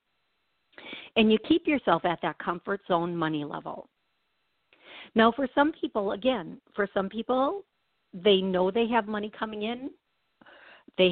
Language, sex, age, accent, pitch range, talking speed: English, female, 50-69, American, 175-230 Hz, 140 wpm